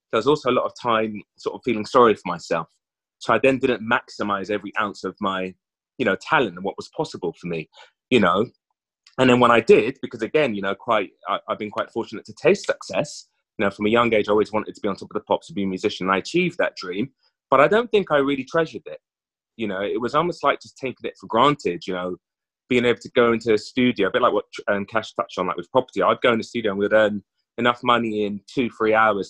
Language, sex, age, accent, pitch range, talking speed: English, male, 30-49, British, 100-135 Hz, 265 wpm